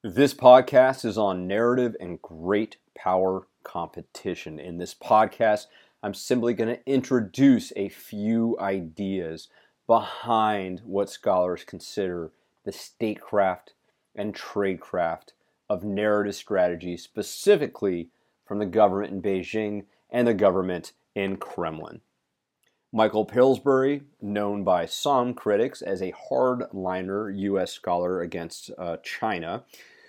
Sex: male